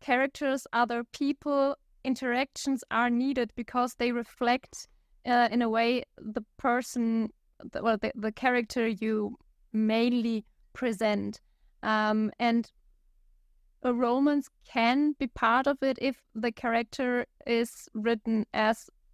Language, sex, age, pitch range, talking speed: English, female, 20-39, 220-260 Hz, 120 wpm